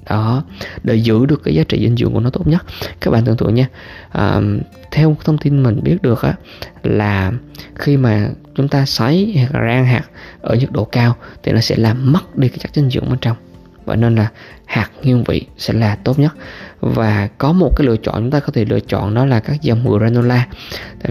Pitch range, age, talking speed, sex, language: 105-135 Hz, 20-39, 225 wpm, male, Vietnamese